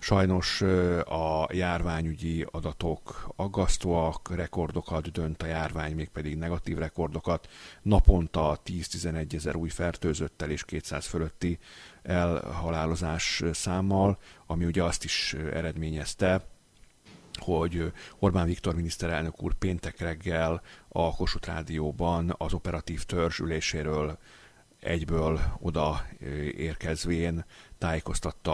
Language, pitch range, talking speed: Hungarian, 80-90 Hz, 95 wpm